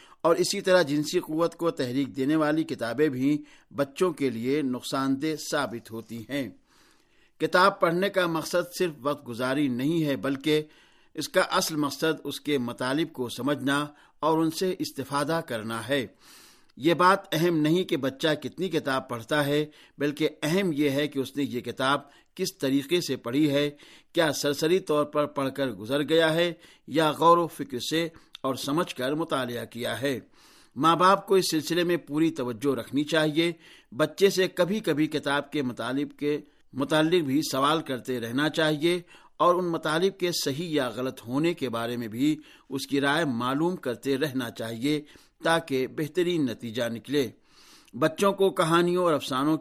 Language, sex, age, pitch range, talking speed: Urdu, male, 60-79, 135-165 Hz, 170 wpm